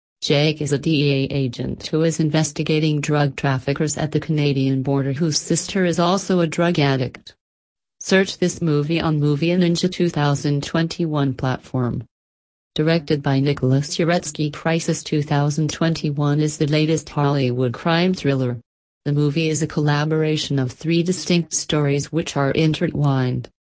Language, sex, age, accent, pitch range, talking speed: English, female, 40-59, American, 140-165 Hz, 135 wpm